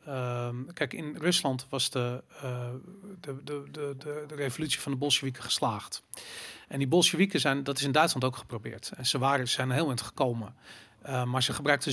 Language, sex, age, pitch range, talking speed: Dutch, male, 40-59, 130-145 Hz, 190 wpm